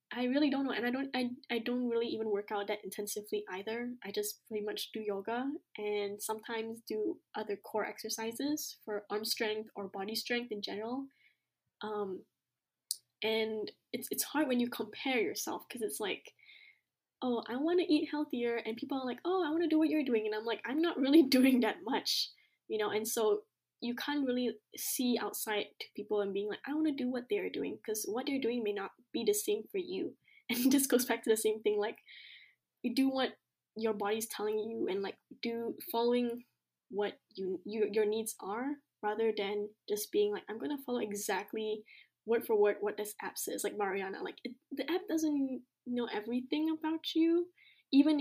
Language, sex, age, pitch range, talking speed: English, female, 10-29, 215-290 Hz, 210 wpm